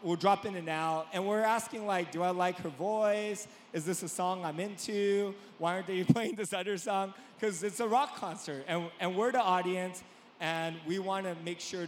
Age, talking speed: 30-49, 215 wpm